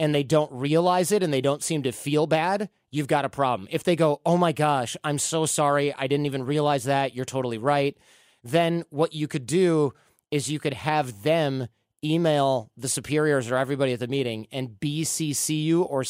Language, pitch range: English, 130-160 Hz